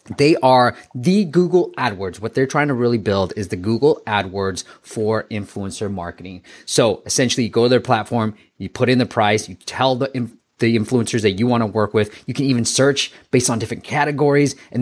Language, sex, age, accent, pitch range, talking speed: English, male, 30-49, American, 100-125 Hz, 205 wpm